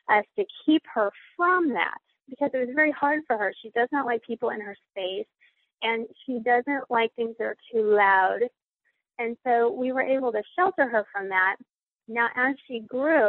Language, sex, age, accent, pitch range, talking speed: English, female, 30-49, American, 210-255 Hz, 200 wpm